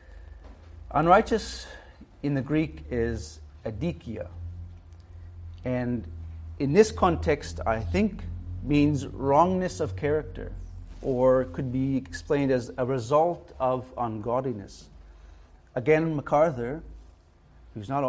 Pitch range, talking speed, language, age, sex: 110-175 Hz, 95 wpm, English, 40-59, male